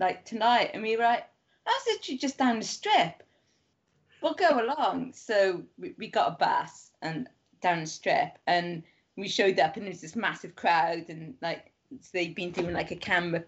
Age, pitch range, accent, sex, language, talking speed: 20-39, 175-220 Hz, British, female, English, 195 wpm